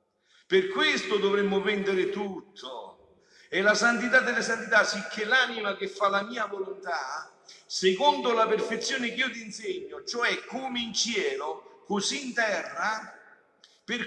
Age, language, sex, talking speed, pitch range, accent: 50-69, Italian, male, 140 wpm, 205-270 Hz, native